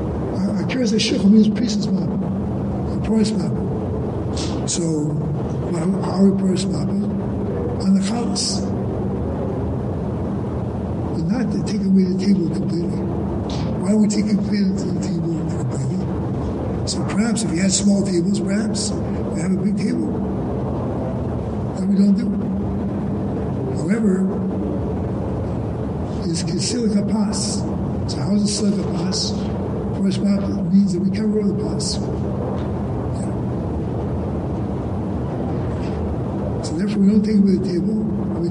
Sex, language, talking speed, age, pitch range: male, English, 125 wpm, 60-79, 175-205 Hz